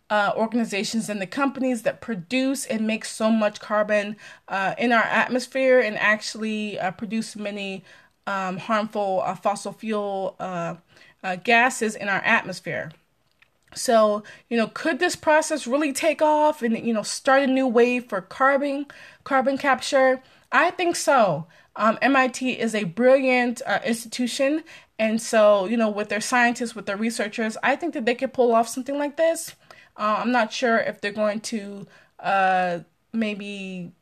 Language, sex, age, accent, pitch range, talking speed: English, female, 20-39, American, 205-255 Hz, 160 wpm